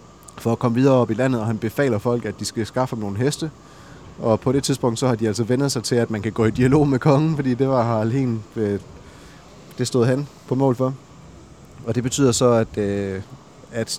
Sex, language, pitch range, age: male, Danish, 110-130 Hz, 30-49